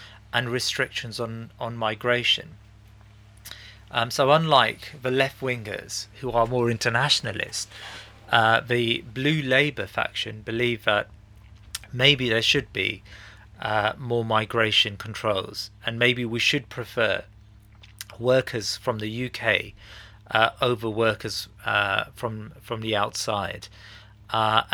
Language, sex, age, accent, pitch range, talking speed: English, male, 30-49, British, 105-120 Hz, 115 wpm